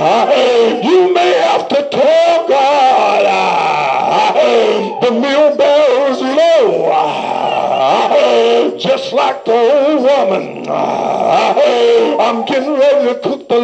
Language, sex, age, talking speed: English, male, 60-79, 95 wpm